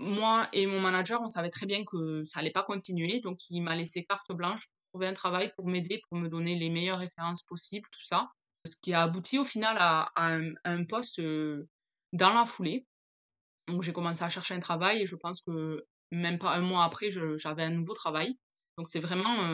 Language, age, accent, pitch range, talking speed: French, 20-39, French, 165-190 Hz, 225 wpm